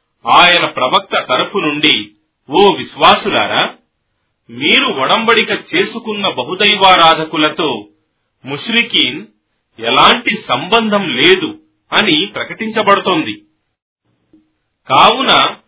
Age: 40-59